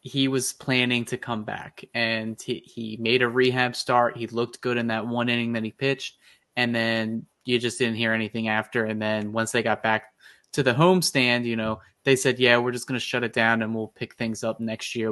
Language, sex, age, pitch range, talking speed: English, male, 20-39, 115-135 Hz, 235 wpm